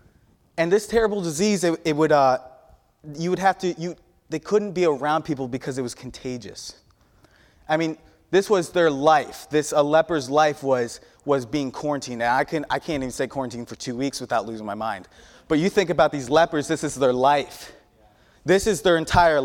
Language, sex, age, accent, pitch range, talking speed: English, male, 20-39, American, 135-175 Hz, 200 wpm